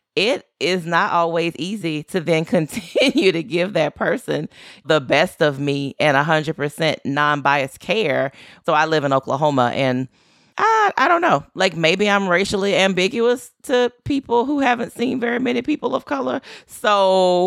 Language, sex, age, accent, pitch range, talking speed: English, female, 30-49, American, 140-200 Hz, 160 wpm